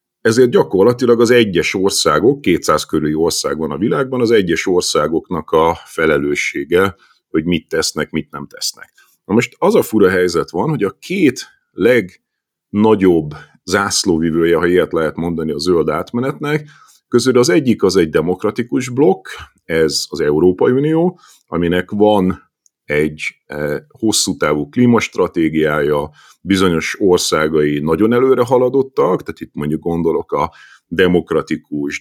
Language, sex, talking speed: Hungarian, male, 130 wpm